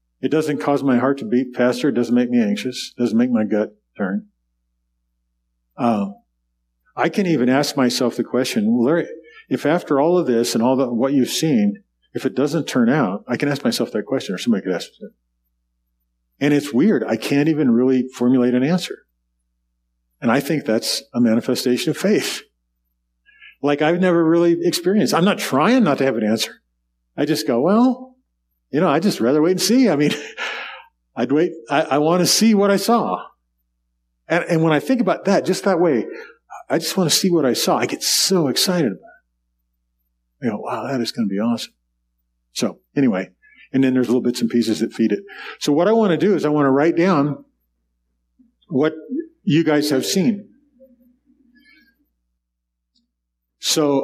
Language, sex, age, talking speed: English, male, 50-69, 190 wpm